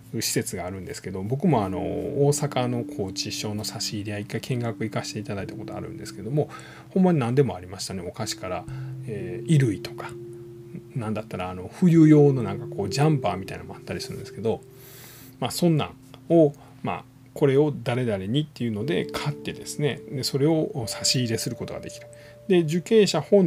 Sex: male